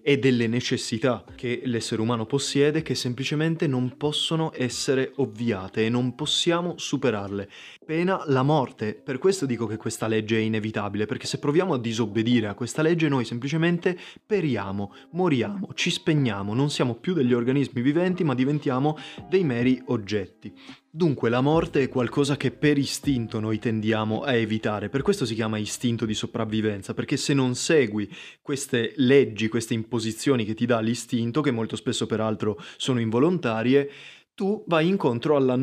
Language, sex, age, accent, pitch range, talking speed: Italian, male, 20-39, native, 110-140 Hz, 160 wpm